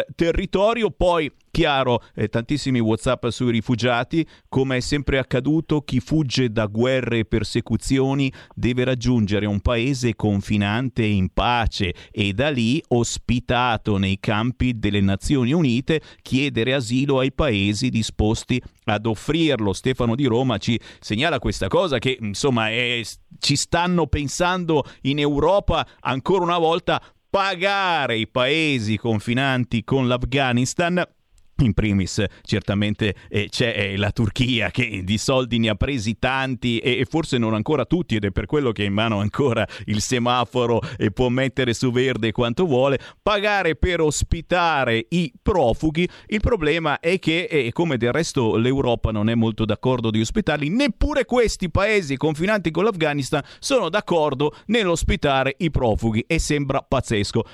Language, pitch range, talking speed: Italian, 110-150 Hz, 145 wpm